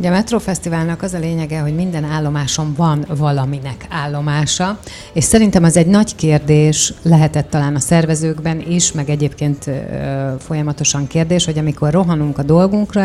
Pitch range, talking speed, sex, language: 150-170 Hz, 145 wpm, female, Hungarian